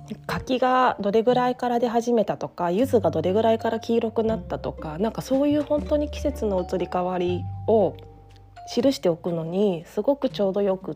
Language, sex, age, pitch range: Japanese, female, 20-39, 175-235 Hz